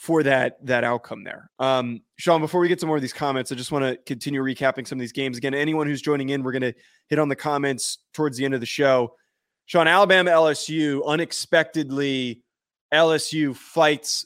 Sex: male